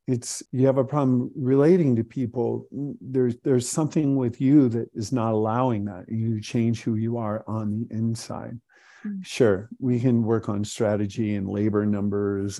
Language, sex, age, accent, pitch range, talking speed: English, male, 50-69, American, 110-125 Hz, 165 wpm